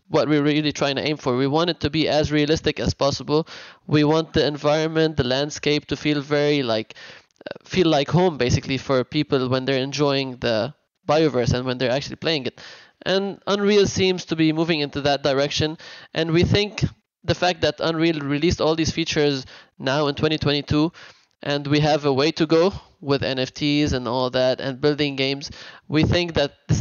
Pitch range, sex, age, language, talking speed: 135-155 Hz, male, 20-39, English, 190 wpm